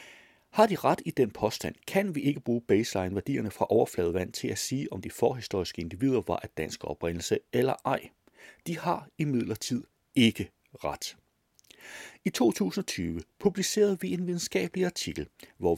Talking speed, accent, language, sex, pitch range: 155 wpm, native, Danish, male, 100-160 Hz